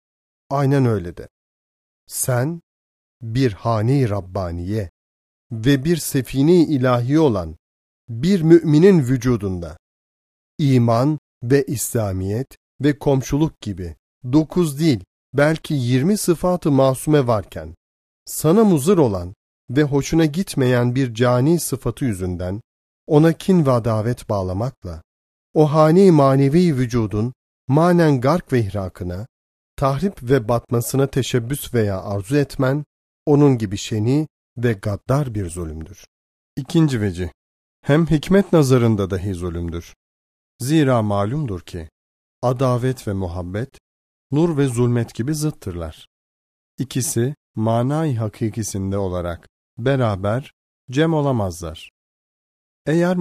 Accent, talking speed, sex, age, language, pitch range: native, 105 wpm, male, 40-59, Turkish, 90-145 Hz